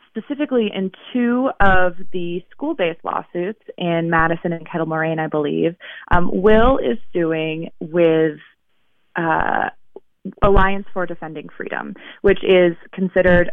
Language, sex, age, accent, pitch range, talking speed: English, female, 20-39, American, 160-195 Hz, 120 wpm